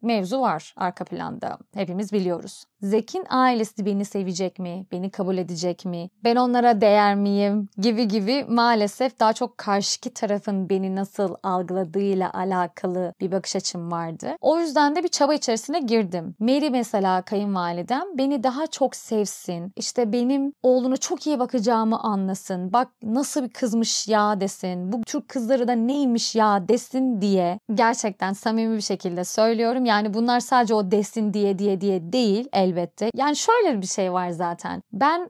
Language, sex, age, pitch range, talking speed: Turkish, female, 30-49, 195-260 Hz, 155 wpm